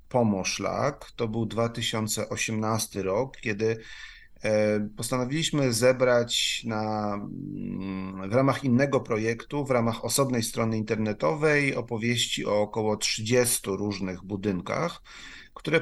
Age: 40-59